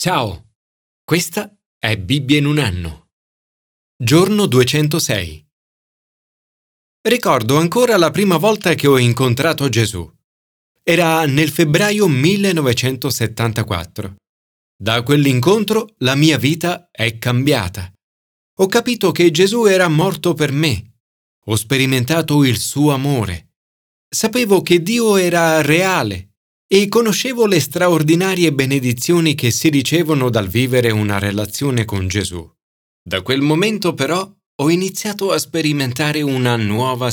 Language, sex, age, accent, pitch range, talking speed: Italian, male, 30-49, native, 110-170 Hz, 115 wpm